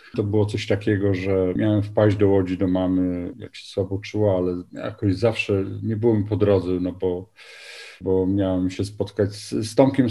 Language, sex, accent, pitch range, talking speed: Polish, male, native, 95-135 Hz, 185 wpm